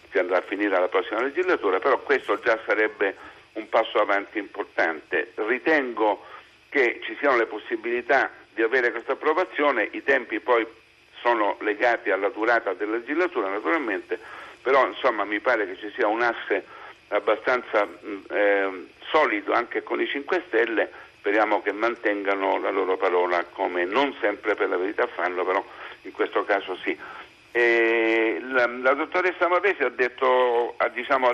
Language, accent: Italian, native